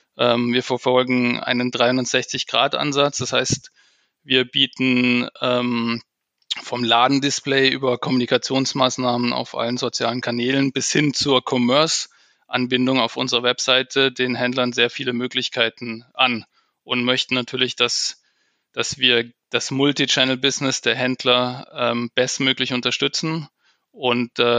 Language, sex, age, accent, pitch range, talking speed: German, male, 20-39, German, 120-130 Hz, 100 wpm